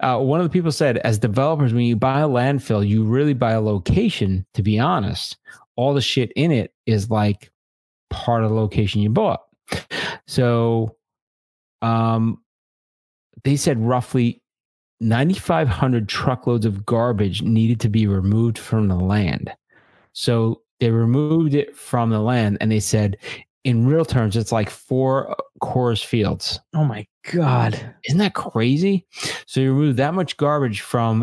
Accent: American